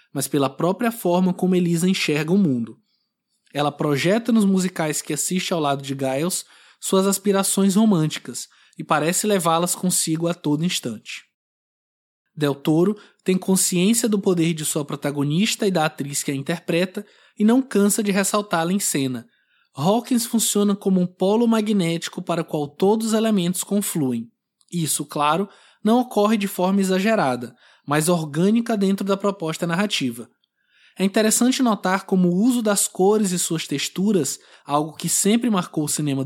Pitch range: 155-205 Hz